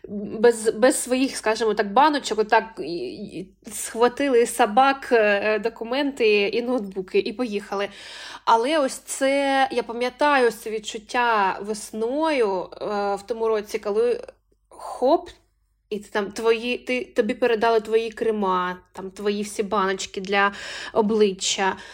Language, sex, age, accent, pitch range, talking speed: Ukrainian, female, 20-39, native, 215-265 Hz, 110 wpm